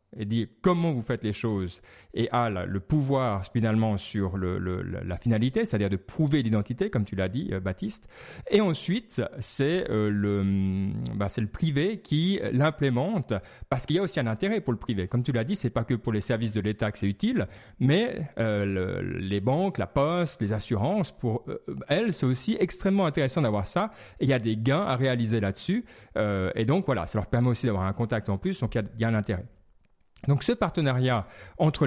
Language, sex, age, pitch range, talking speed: French, male, 40-59, 105-145 Hz, 215 wpm